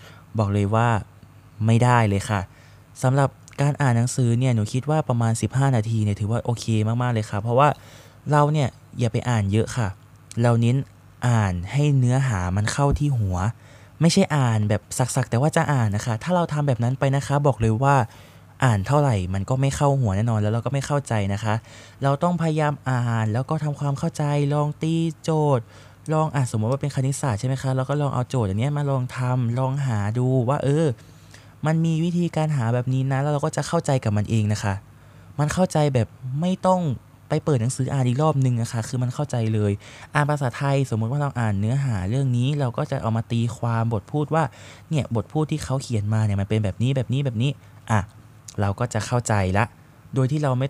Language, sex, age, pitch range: Thai, male, 20-39, 110-145 Hz